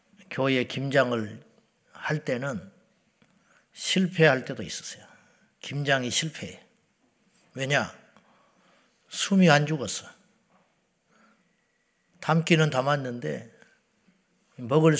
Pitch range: 120-165 Hz